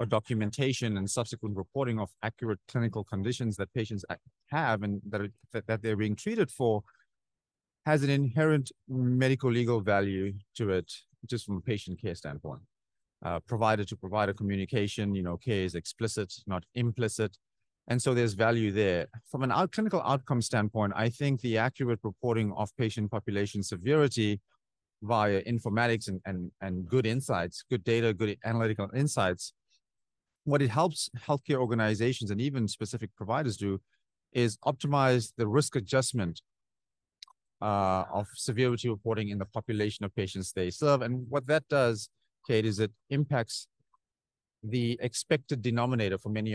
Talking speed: 150 wpm